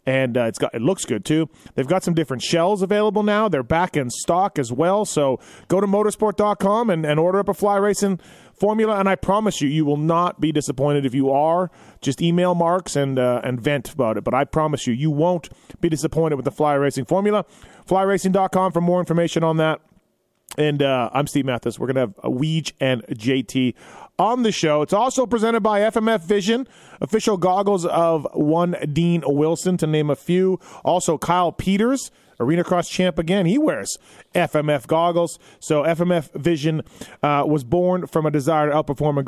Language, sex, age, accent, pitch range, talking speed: English, male, 30-49, American, 140-185 Hz, 195 wpm